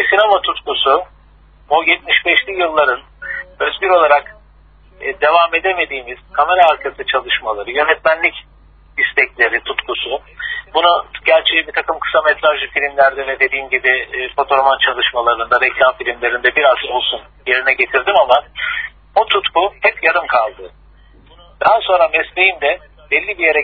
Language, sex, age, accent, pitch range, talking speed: Turkish, male, 50-69, native, 135-170 Hz, 120 wpm